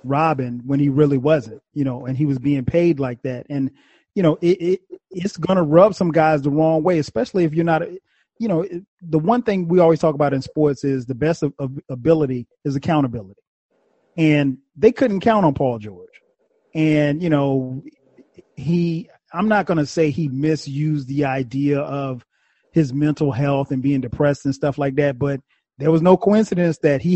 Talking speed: 195 wpm